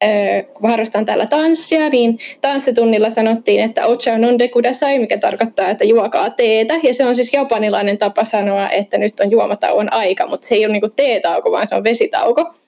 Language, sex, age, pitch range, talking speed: Finnish, female, 20-39, 215-250 Hz, 180 wpm